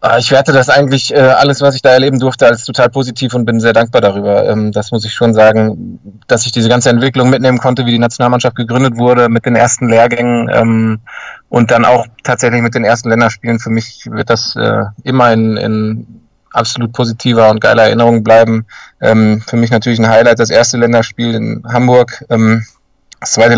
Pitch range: 115-125 Hz